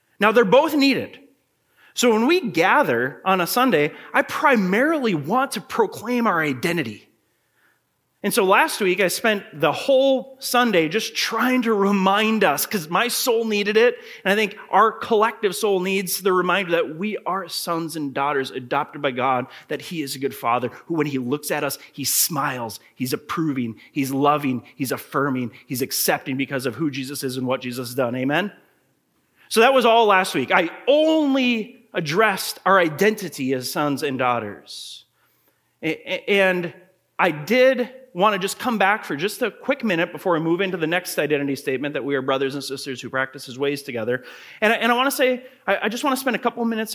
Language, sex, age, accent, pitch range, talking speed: English, male, 30-49, American, 145-235 Hz, 190 wpm